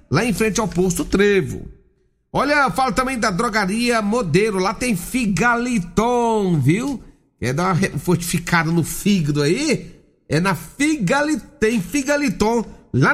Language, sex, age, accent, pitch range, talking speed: Portuguese, male, 60-79, Brazilian, 175-220 Hz, 135 wpm